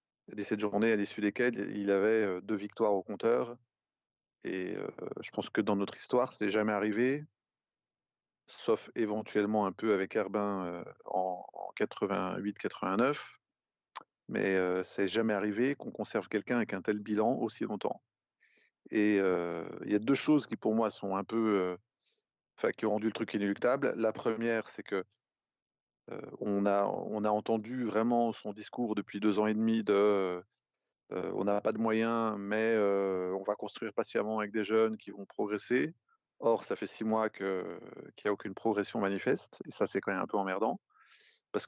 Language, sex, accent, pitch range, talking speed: French, male, French, 100-115 Hz, 190 wpm